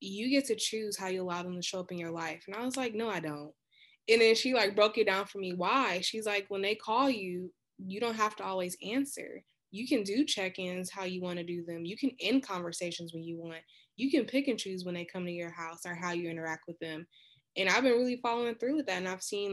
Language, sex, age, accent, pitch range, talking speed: English, female, 20-39, American, 175-210 Hz, 270 wpm